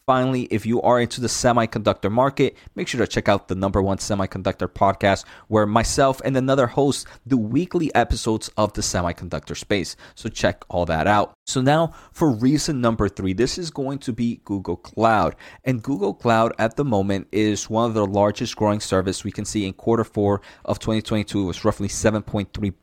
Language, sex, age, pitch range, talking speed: English, male, 30-49, 100-125 Hz, 190 wpm